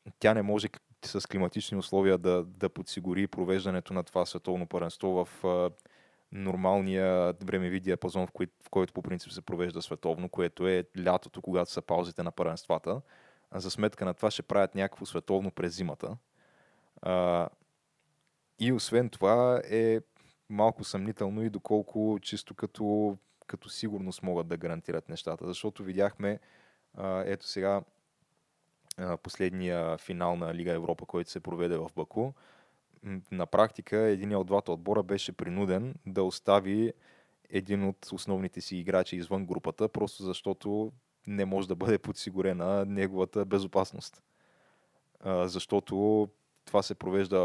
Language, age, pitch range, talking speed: Bulgarian, 20-39, 90-105 Hz, 135 wpm